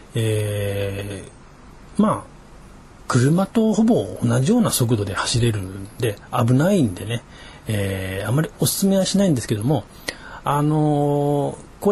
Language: Japanese